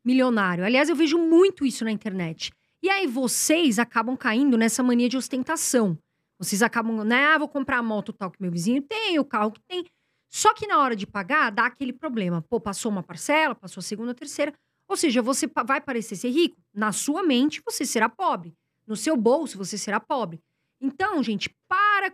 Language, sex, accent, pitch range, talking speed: Portuguese, female, Brazilian, 215-295 Hz, 200 wpm